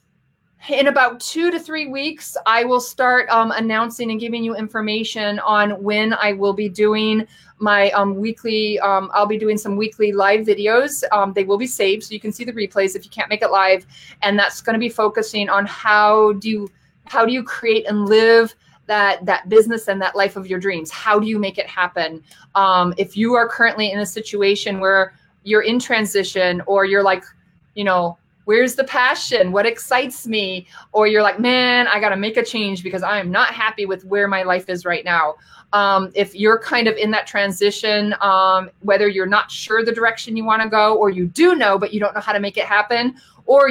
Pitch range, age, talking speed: 195-225 Hz, 30-49, 215 wpm